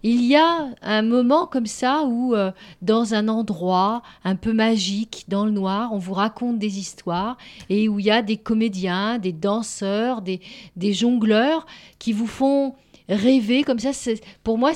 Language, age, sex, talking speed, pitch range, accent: French, 40-59, female, 180 wpm, 185-230 Hz, French